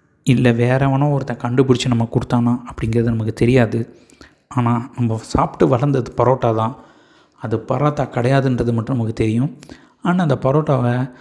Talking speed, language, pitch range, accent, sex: 130 wpm, Tamil, 120-140 Hz, native, male